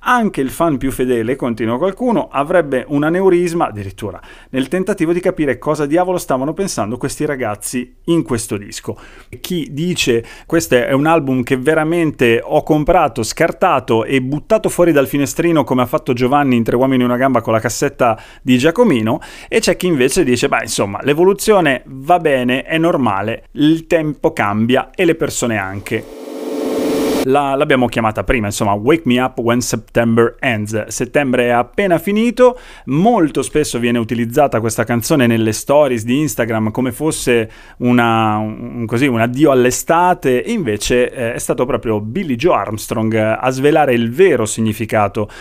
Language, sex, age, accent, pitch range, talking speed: Italian, male, 30-49, native, 115-160 Hz, 155 wpm